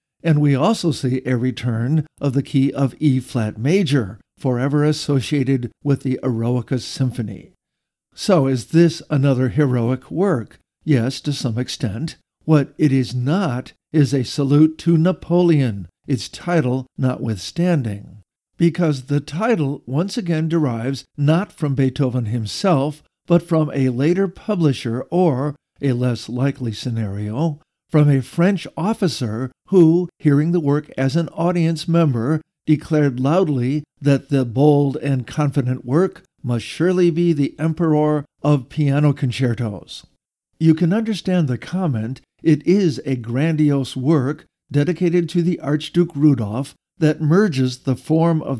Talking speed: 135 wpm